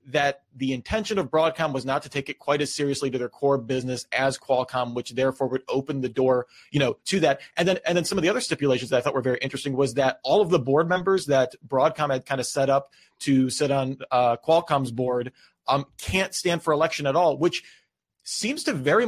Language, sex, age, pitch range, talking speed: English, male, 30-49, 130-160 Hz, 235 wpm